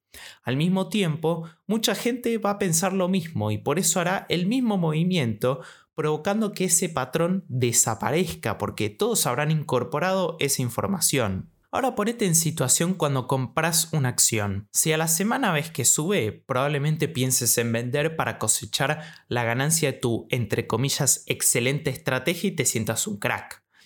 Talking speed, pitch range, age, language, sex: 155 wpm, 125-185 Hz, 20-39, Spanish, male